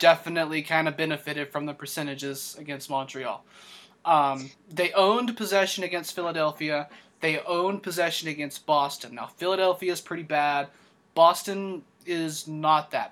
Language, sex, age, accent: English, male, 30-49, American